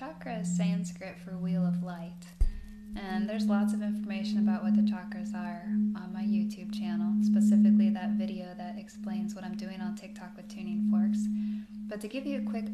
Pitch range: 185-210 Hz